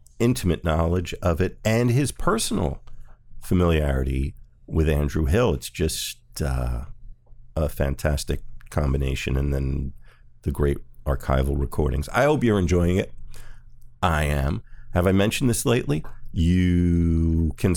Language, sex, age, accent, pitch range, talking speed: English, male, 50-69, American, 75-100 Hz, 125 wpm